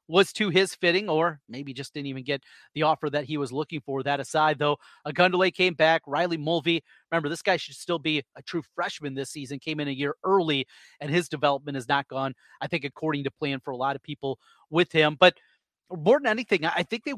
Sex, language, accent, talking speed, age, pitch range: male, English, American, 230 wpm, 30-49, 145-185 Hz